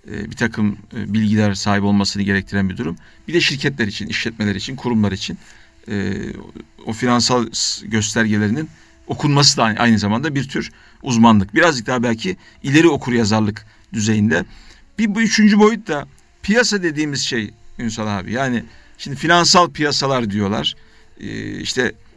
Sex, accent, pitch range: male, native, 110-170 Hz